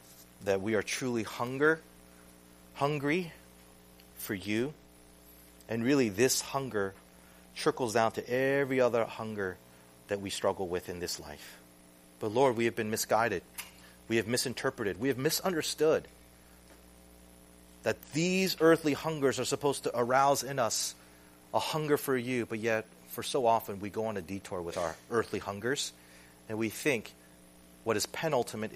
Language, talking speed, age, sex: English, 150 wpm, 30-49, male